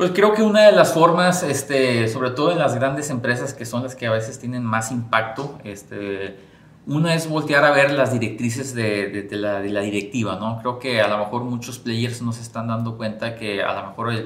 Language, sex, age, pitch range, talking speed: Spanish, male, 30-49, 105-125 Hz, 230 wpm